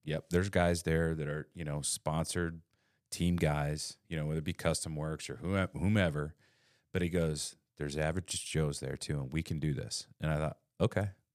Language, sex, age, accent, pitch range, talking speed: English, male, 30-49, American, 80-100 Hz, 195 wpm